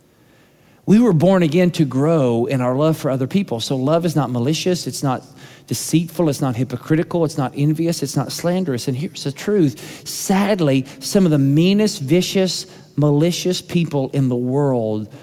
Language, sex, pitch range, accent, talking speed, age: English, male, 170-245 Hz, American, 175 wpm, 40-59